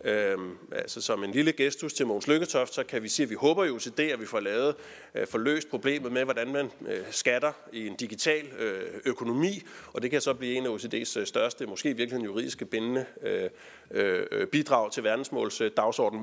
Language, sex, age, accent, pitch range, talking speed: Danish, male, 30-49, native, 125-210 Hz, 180 wpm